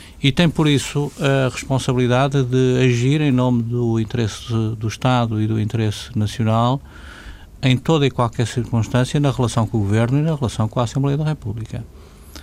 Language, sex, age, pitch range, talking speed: Portuguese, male, 50-69, 105-125 Hz, 175 wpm